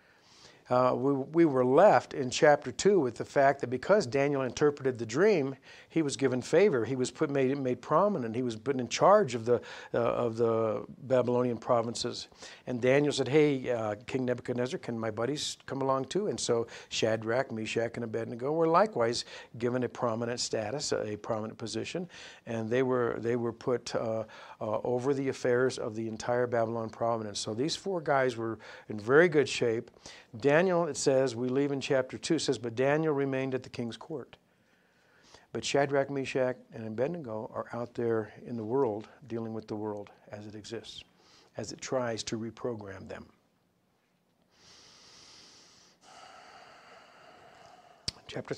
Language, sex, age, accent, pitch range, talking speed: English, male, 50-69, American, 115-135 Hz, 165 wpm